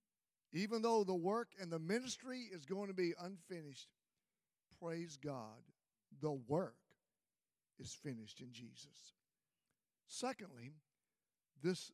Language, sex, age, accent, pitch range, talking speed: English, male, 50-69, American, 150-205 Hz, 110 wpm